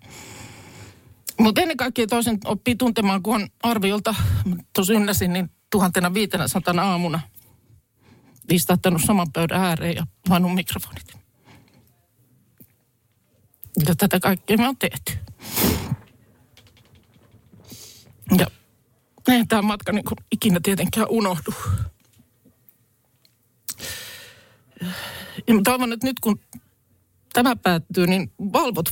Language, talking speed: Finnish, 85 wpm